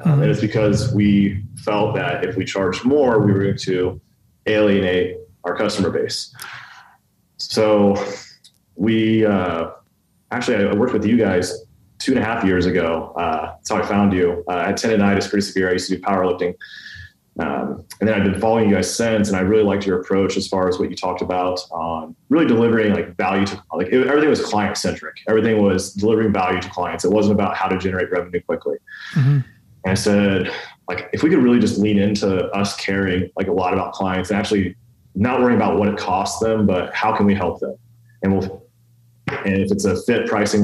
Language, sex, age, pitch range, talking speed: English, male, 20-39, 95-110 Hz, 210 wpm